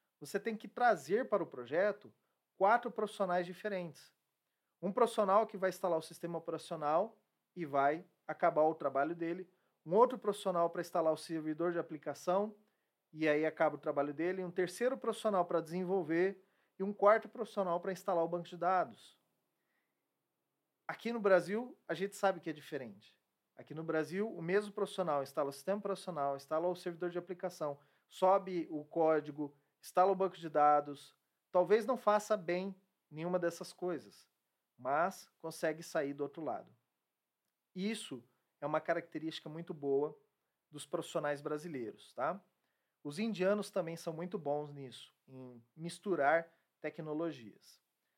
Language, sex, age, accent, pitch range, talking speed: Portuguese, male, 40-59, Brazilian, 150-190 Hz, 145 wpm